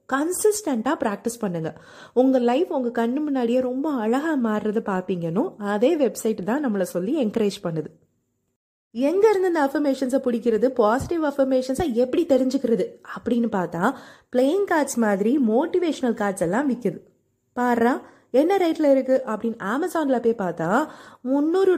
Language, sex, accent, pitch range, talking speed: Tamil, female, native, 215-280 Hz, 75 wpm